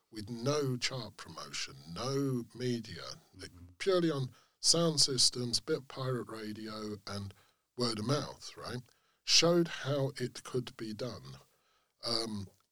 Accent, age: British, 40-59